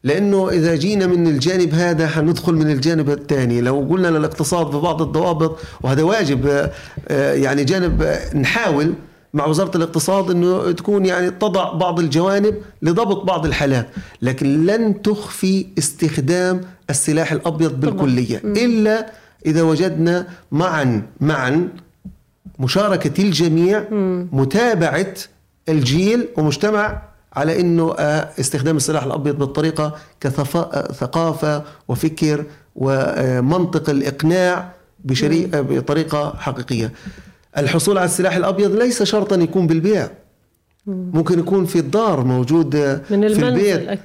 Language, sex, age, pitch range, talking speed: Arabic, male, 40-59, 150-185 Hz, 110 wpm